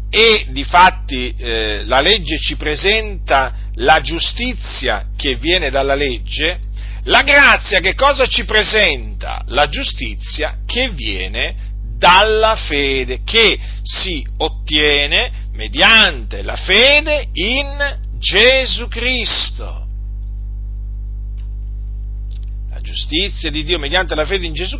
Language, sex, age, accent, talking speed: Italian, male, 40-59, native, 105 wpm